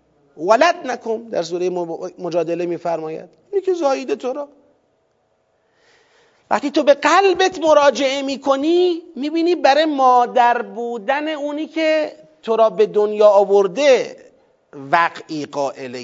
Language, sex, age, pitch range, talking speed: Persian, male, 40-59, 195-315 Hz, 105 wpm